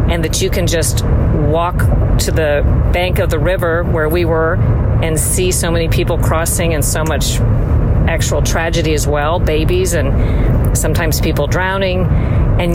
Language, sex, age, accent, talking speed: English, female, 50-69, American, 160 wpm